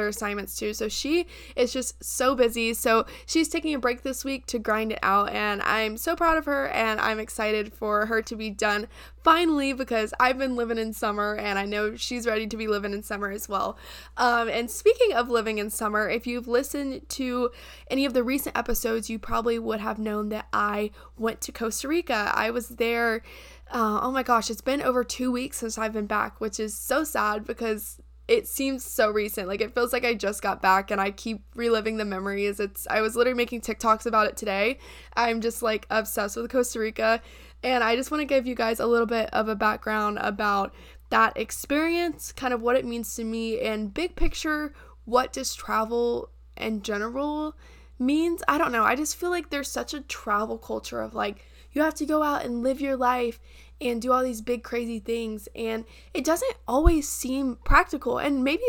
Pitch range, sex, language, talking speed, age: 220-265 Hz, female, English, 210 wpm, 10-29